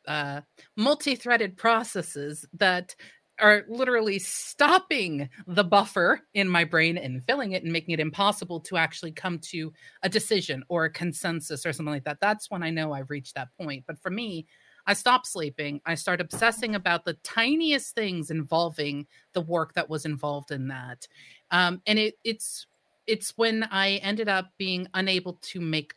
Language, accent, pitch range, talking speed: English, American, 155-200 Hz, 170 wpm